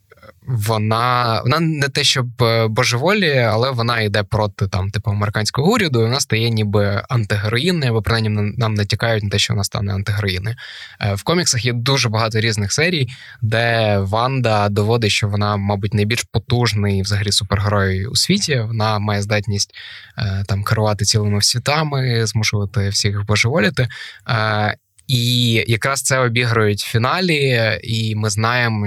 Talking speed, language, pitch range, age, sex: 135 wpm, Ukrainian, 105-125 Hz, 20-39, male